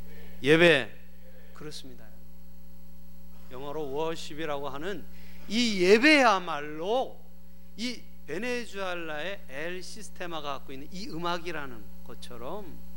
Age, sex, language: 40-59, male, Korean